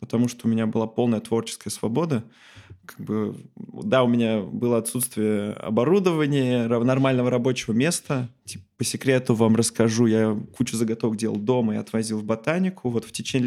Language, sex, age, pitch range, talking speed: Russian, male, 20-39, 110-130 Hz, 160 wpm